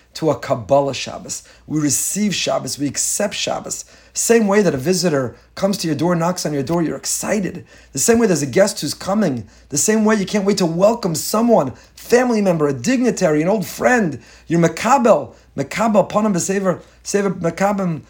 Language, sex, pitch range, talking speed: English, male, 150-205 Hz, 175 wpm